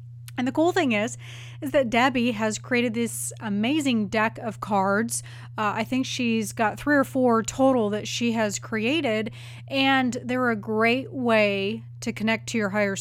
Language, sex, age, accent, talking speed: English, female, 30-49, American, 175 wpm